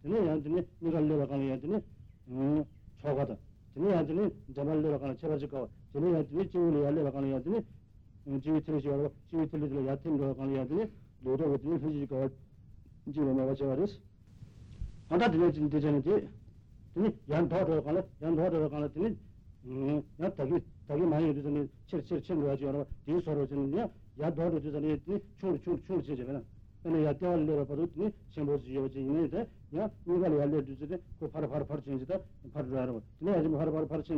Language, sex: Italian, male